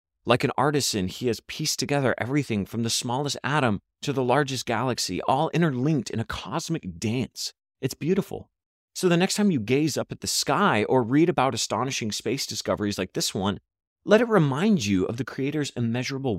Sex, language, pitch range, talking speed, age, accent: male, English, 105-135 Hz, 185 wpm, 30-49, American